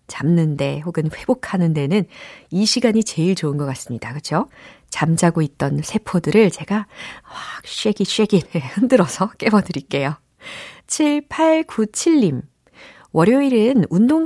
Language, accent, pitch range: Korean, native, 155-245 Hz